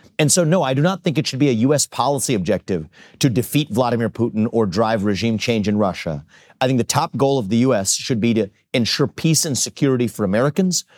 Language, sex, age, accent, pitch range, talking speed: English, male, 40-59, American, 115-160 Hz, 225 wpm